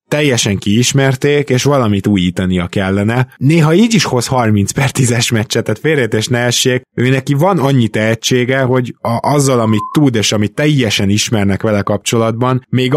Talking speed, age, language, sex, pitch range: 150 wpm, 20-39, Hungarian, male, 100-130 Hz